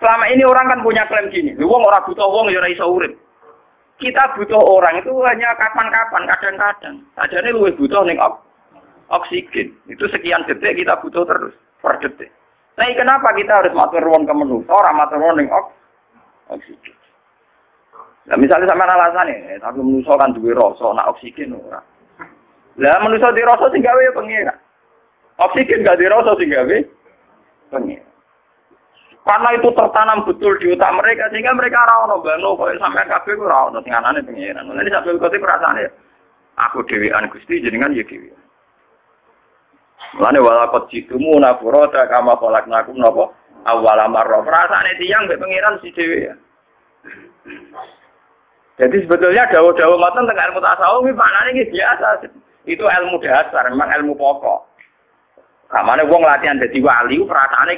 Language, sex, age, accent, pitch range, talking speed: Indonesian, male, 40-59, native, 170-260 Hz, 145 wpm